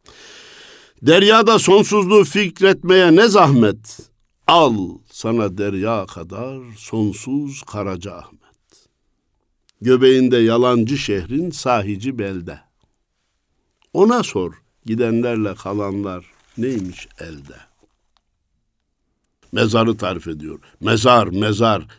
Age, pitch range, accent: 60-79, 105-165 Hz, native